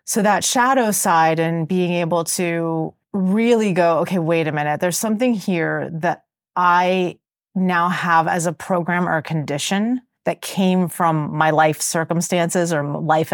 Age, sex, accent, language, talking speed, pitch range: 30-49, female, American, English, 160 wpm, 160-195 Hz